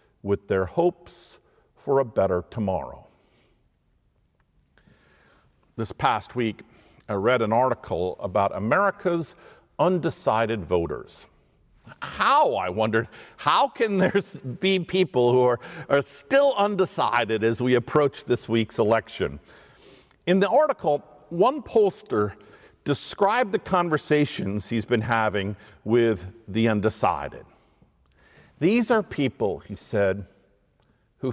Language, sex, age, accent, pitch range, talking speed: English, male, 50-69, American, 110-170 Hz, 110 wpm